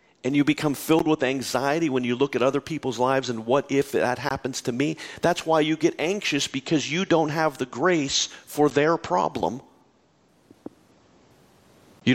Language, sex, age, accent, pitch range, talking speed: English, male, 40-59, American, 120-160 Hz, 175 wpm